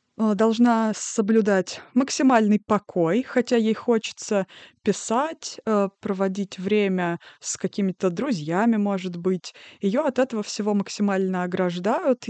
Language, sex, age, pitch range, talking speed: Russian, female, 20-39, 195-235 Hz, 105 wpm